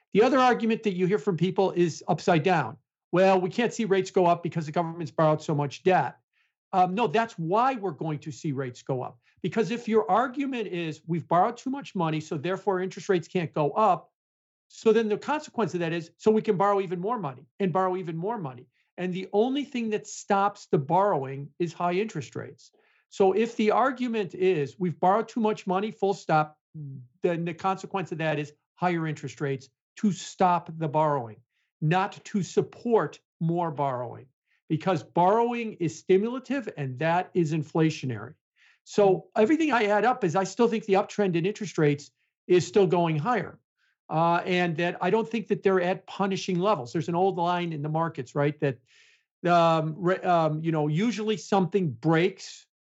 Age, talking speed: 50-69, 190 wpm